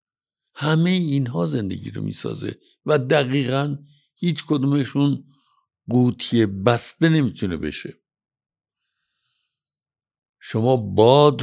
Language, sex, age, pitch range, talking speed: Persian, male, 60-79, 105-145 Hz, 85 wpm